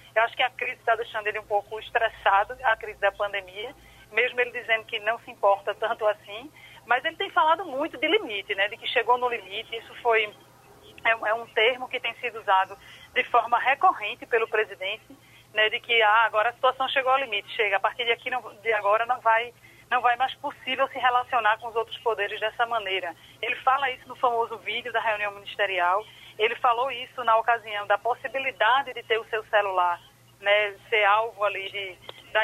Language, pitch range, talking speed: Portuguese, 215-260 Hz, 200 wpm